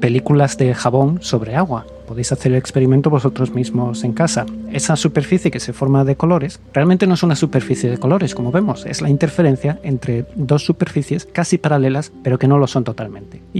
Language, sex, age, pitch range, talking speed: Spanish, male, 30-49, 125-150 Hz, 195 wpm